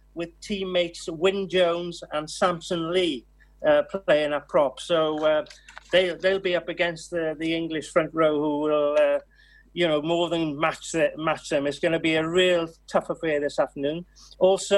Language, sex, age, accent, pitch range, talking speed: English, male, 40-59, British, 165-195 Hz, 185 wpm